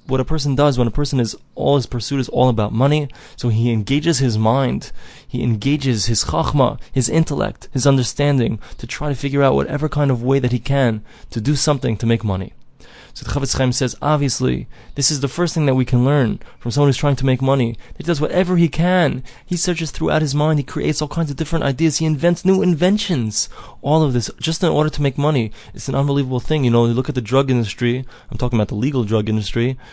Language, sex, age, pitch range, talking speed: English, male, 20-39, 125-160 Hz, 235 wpm